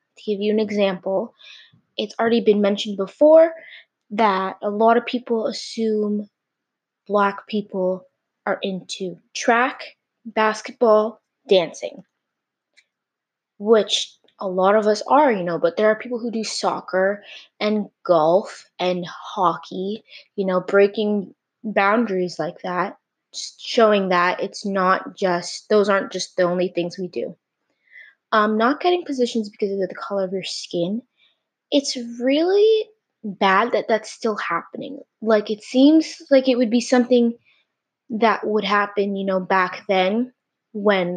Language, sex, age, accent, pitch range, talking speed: English, female, 20-39, American, 190-235 Hz, 140 wpm